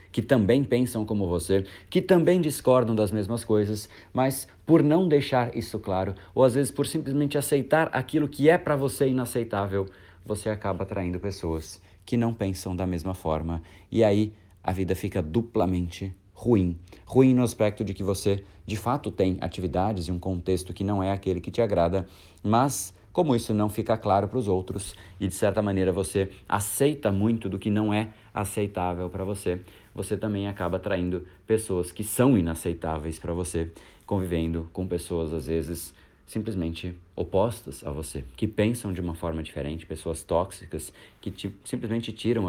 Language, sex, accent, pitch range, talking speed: Portuguese, male, Brazilian, 90-115 Hz, 170 wpm